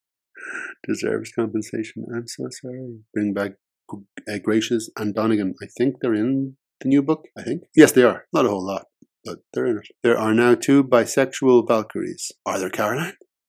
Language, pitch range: English, 100-120 Hz